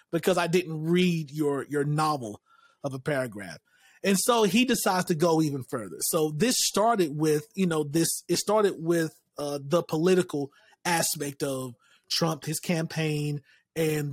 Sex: male